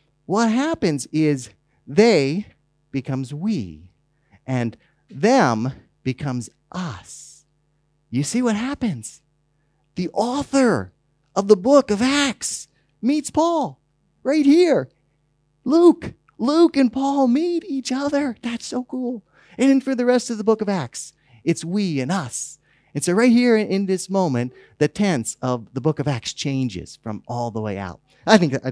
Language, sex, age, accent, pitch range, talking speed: English, male, 30-49, American, 145-220 Hz, 150 wpm